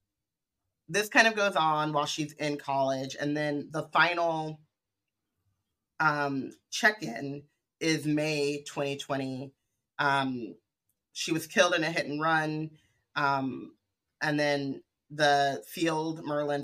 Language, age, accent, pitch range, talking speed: English, 30-49, American, 135-160 Hz, 120 wpm